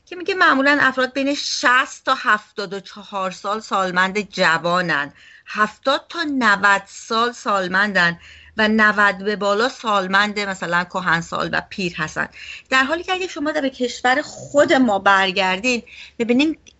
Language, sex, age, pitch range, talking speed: Persian, female, 30-49, 185-235 Hz, 135 wpm